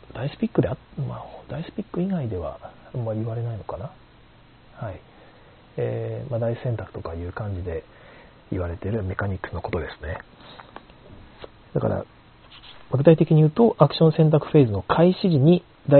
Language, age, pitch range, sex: Japanese, 40-59, 105-155 Hz, male